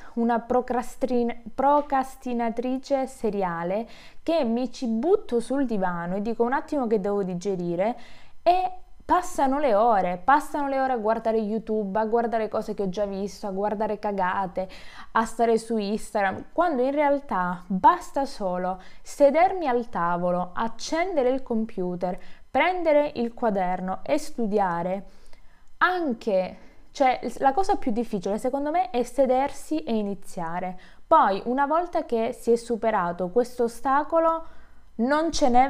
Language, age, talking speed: Italian, 20-39, 130 wpm